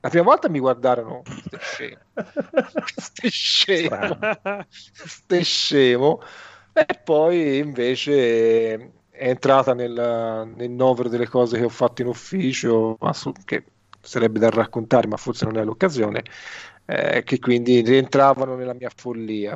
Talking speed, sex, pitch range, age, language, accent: 125 wpm, male, 115-160 Hz, 40-59, Italian, native